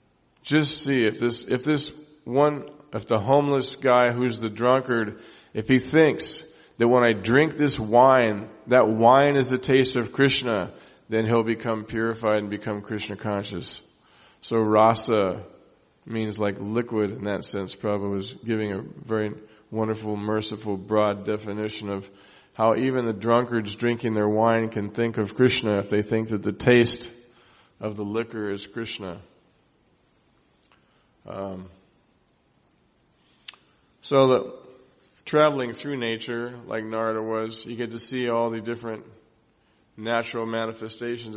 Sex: male